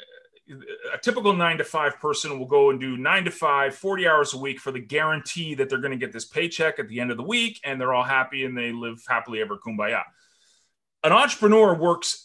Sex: male